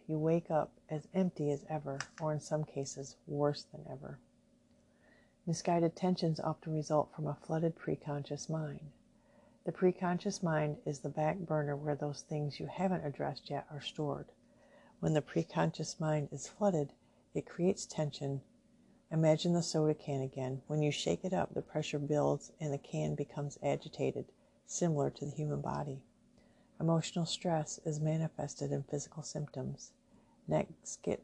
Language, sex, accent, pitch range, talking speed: English, female, American, 145-165 Hz, 155 wpm